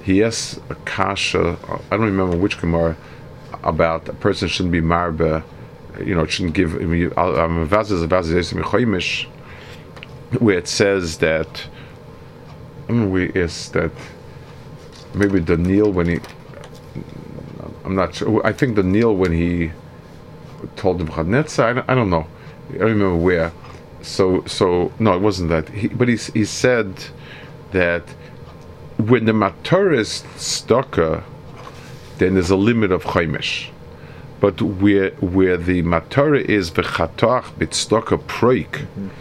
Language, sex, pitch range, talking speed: English, male, 85-110 Hz, 130 wpm